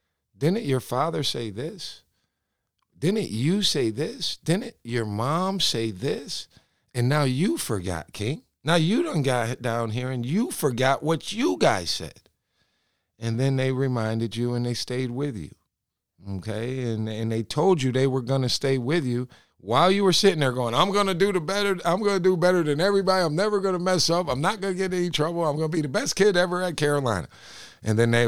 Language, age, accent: English, 50-69, American